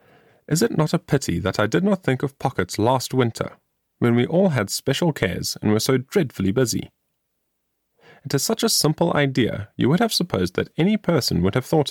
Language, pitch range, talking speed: English, 100-165 Hz, 205 wpm